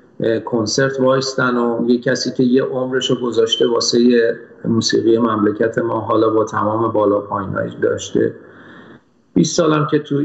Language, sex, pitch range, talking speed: Persian, male, 120-155 Hz, 135 wpm